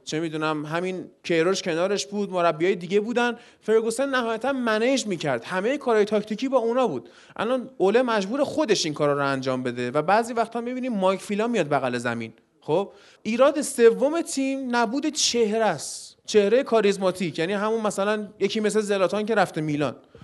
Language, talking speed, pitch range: Persian, 180 wpm, 180-230 Hz